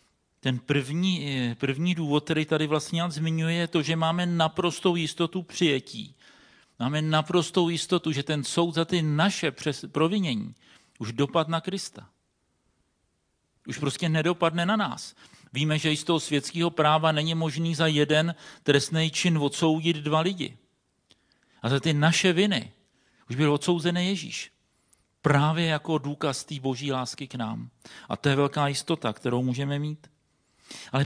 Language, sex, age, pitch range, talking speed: Czech, male, 40-59, 135-170 Hz, 150 wpm